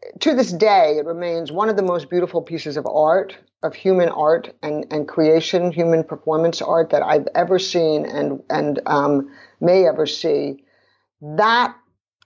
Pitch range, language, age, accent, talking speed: 160-200 Hz, English, 50-69, American, 160 wpm